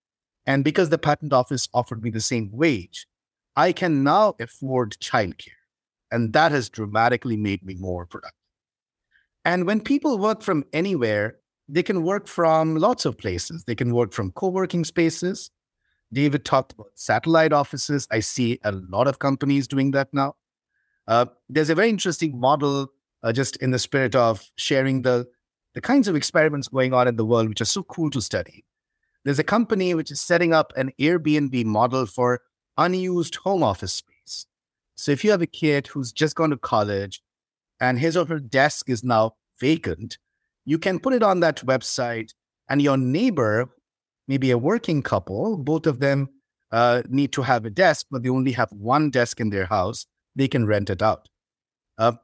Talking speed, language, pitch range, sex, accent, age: 180 wpm, English, 120-165 Hz, male, Indian, 50-69